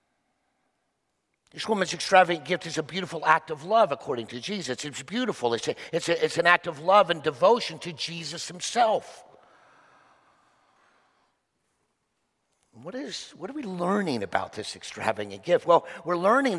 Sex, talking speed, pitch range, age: male, 140 wpm, 160-220 Hz, 50-69